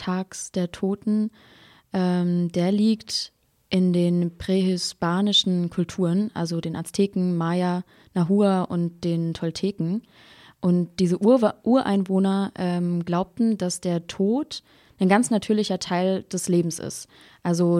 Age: 20-39